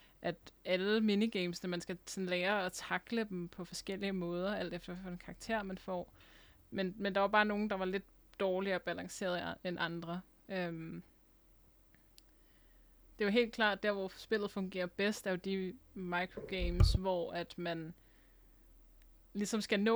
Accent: native